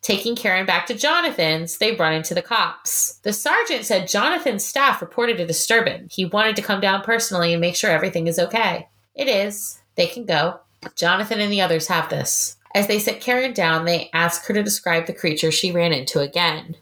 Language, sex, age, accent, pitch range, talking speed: English, female, 20-39, American, 170-225 Hz, 205 wpm